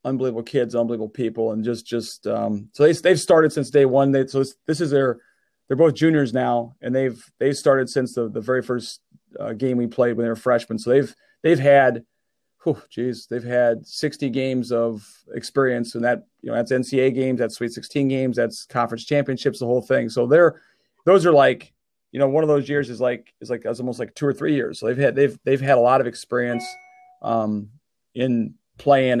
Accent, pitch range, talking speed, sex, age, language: American, 120-140 Hz, 220 wpm, male, 30-49, English